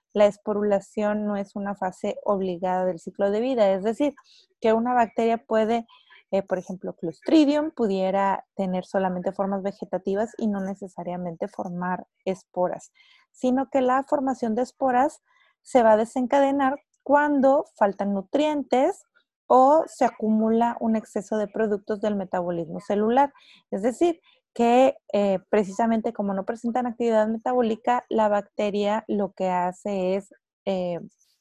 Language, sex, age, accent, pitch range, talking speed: Spanish, female, 30-49, Mexican, 195-245 Hz, 135 wpm